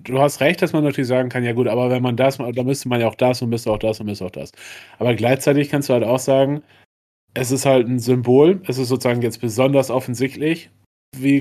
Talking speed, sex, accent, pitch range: 245 wpm, male, German, 120-140 Hz